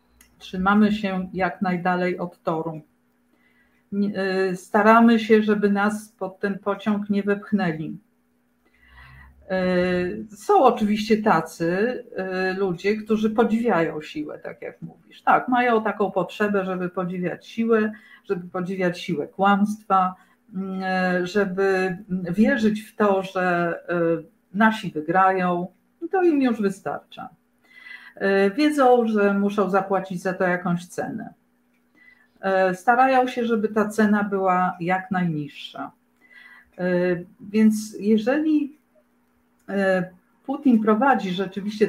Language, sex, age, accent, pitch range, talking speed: Polish, female, 50-69, native, 180-220 Hz, 95 wpm